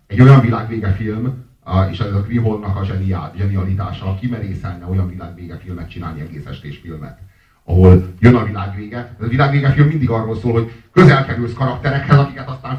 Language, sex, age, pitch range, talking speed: Hungarian, male, 30-49, 115-145 Hz, 155 wpm